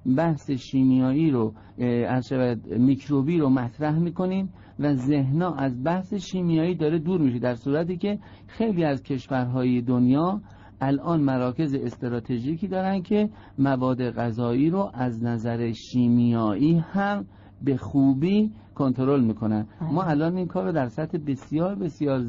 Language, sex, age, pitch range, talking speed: Persian, male, 50-69, 115-160 Hz, 125 wpm